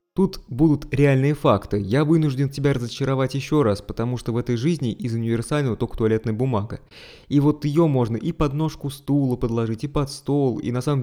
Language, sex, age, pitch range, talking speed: Russian, male, 20-39, 110-140 Hz, 190 wpm